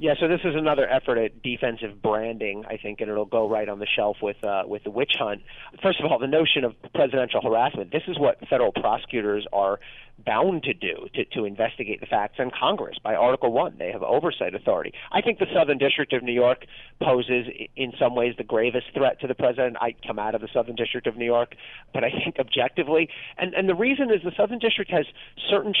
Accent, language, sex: American, English, male